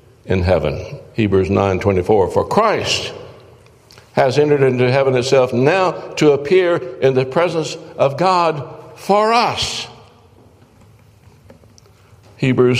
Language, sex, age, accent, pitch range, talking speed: English, male, 60-79, American, 110-160 Hz, 115 wpm